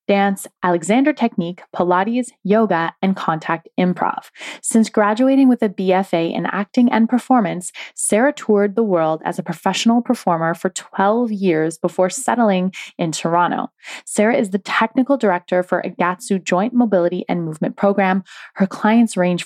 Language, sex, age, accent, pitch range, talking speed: English, female, 20-39, American, 170-220 Hz, 145 wpm